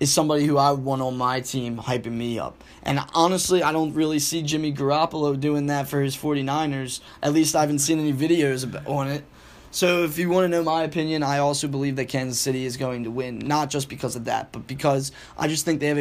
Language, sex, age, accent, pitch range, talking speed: English, male, 10-29, American, 135-155 Hz, 235 wpm